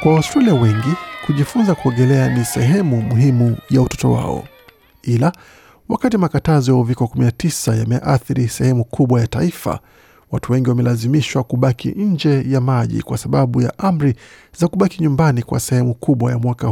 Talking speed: 145 wpm